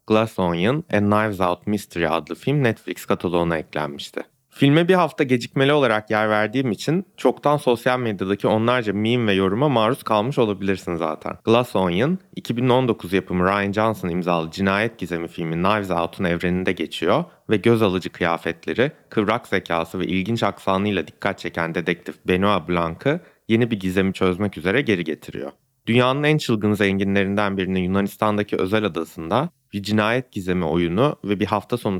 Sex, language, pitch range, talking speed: male, Turkish, 90-115 Hz, 150 wpm